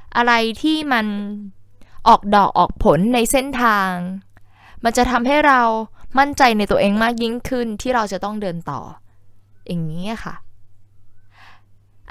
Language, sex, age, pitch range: Thai, female, 10-29, 150-235 Hz